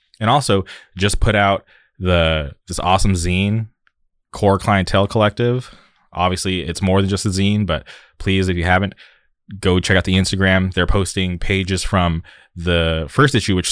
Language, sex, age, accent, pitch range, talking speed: English, male, 20-39, American, 85-100 Hz, 160 wpm